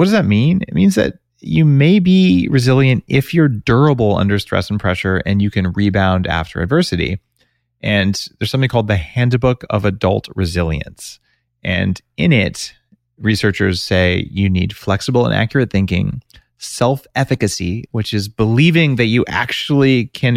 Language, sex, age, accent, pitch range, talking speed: English, male, 30-49, American, 90-125 Hz, 155 wpm